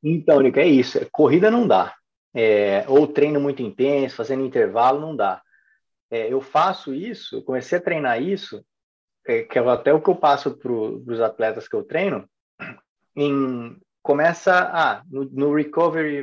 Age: 20-39